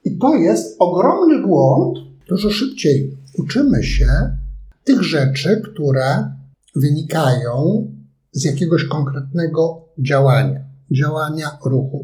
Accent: native